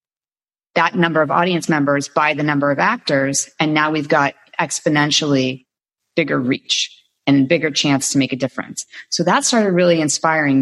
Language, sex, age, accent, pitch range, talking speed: English, female, 30-49, American, 135-165 Hz, 165 wpm